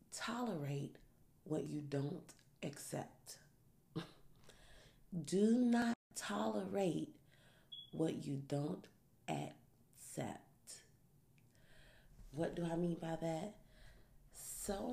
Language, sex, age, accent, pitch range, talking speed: English, female, 30-49, American, 140-170 Hz, 75 wpm